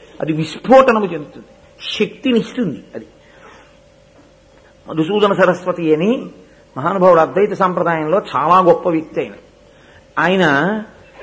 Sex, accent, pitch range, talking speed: male, native, 165-235 Hz, 85 wpm